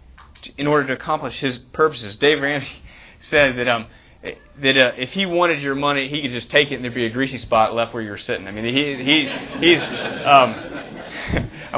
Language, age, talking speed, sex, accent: English, 30-49, 205 wpm, male, American